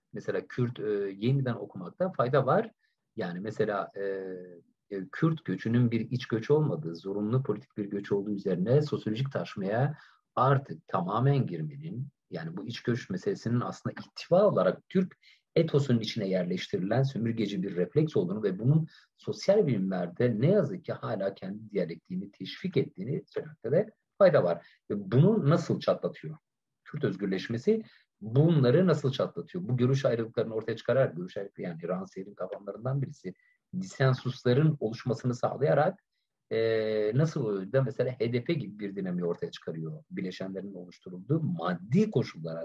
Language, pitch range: Turkish, 105-150 Hz